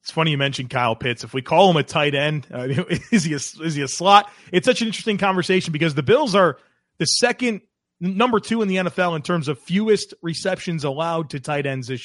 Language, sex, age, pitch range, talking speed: English, male, 30-49, 130-170 Hz, 235 wpm